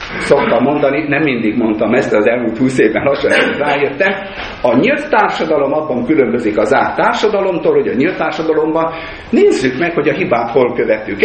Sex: male